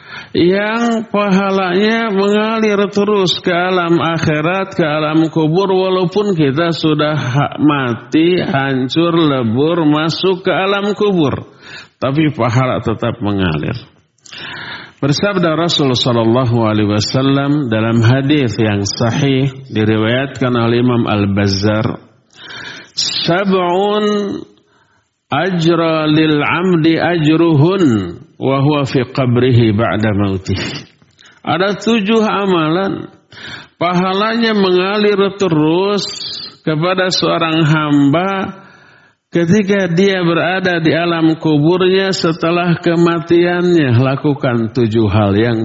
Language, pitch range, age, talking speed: Indonesian, 130-185 Hz, 50-69, 80 wpm